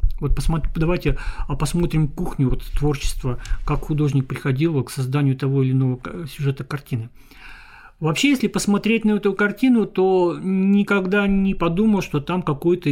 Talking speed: 140 wpm